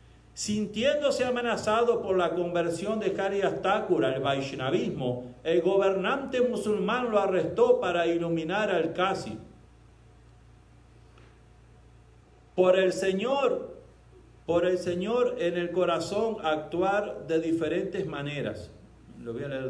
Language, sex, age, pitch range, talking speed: Spanish, male, 50-69, 140-205 Hz, 110 wpm